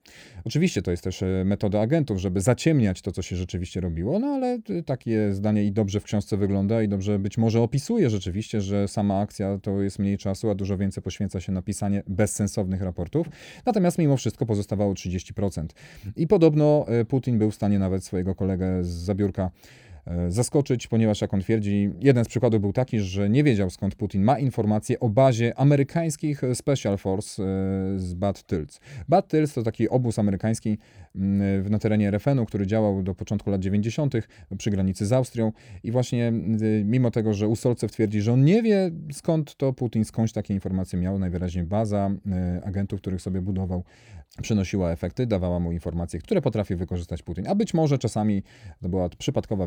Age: 40-59